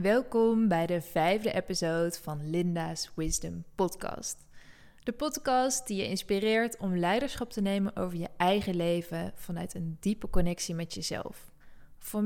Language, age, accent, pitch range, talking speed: Dutch, 20-39, Dutch, 175-215 Hz, 140 wpm